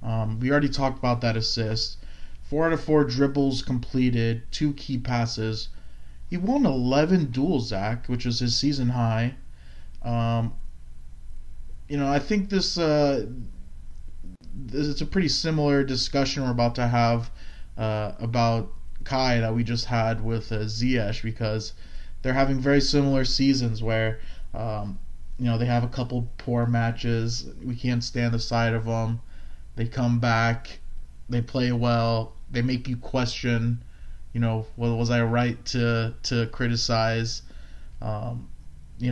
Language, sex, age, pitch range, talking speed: English, male, 20-39, 110-125 Hz, 145 wpm